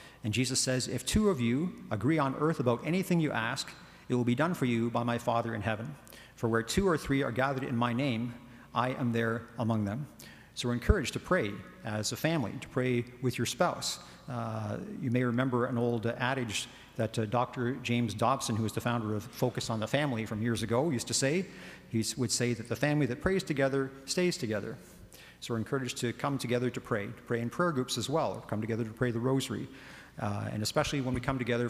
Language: English